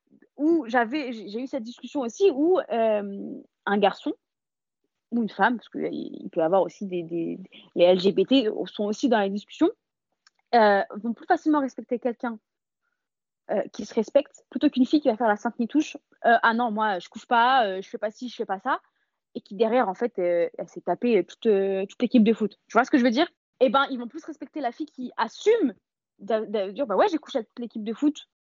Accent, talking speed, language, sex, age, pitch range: French, 230 wpm, French, female, 20-39, 215-275 Hz